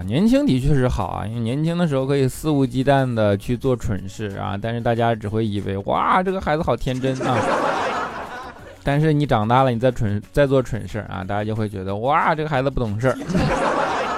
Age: 20-39